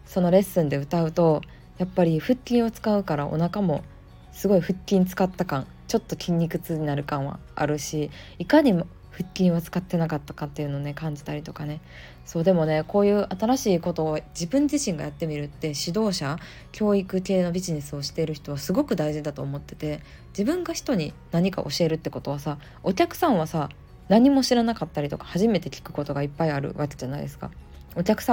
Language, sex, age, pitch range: Japanese, female, 20-39, 150-205 Hz